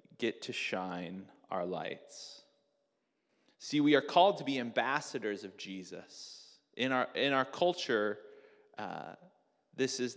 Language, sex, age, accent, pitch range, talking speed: English, male, 30-49, American, 115-145 Hz, 130 wpm